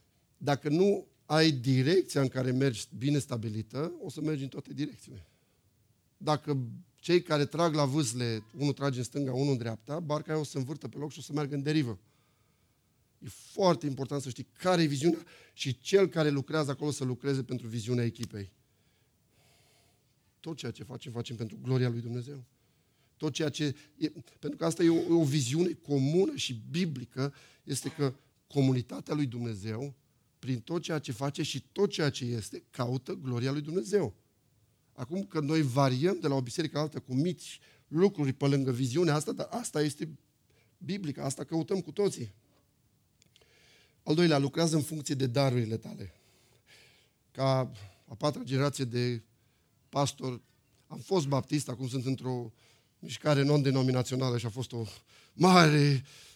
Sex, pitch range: male, 125-155 Hz